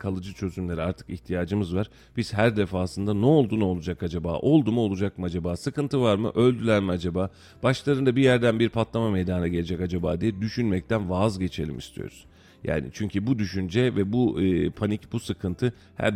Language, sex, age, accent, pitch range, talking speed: Turkish, male, 40-59, native, 95-125 Hz, 170 wpm